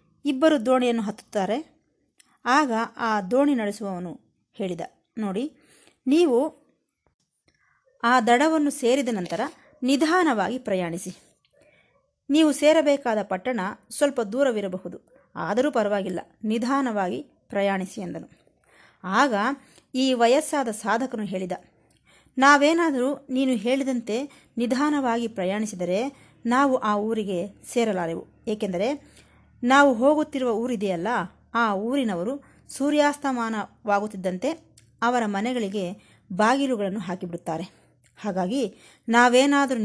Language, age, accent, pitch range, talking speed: Kannada, 20-39, native, 195-265 Hz, 80 wpm